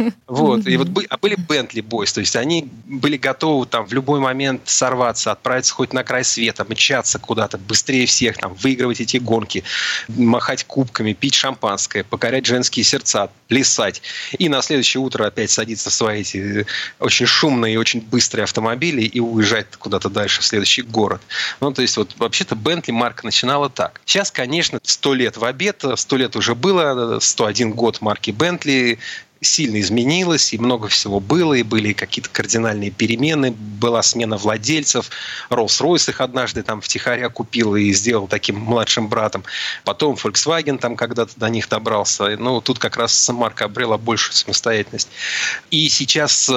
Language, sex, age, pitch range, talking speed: Russian, male, 30-49, 110-135 Hz, 160 wpm